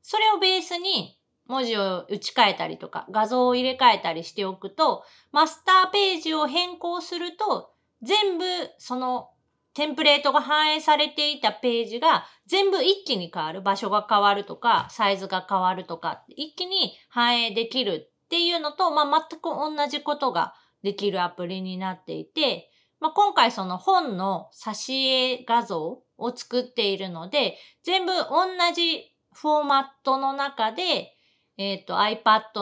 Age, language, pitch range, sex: 30-49, Japanese, 200-320 Hz, female